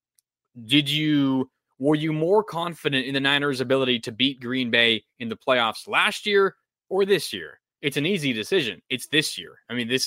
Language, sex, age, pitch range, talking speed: English, male, 20-39, 115-145 Hz, 190 wpm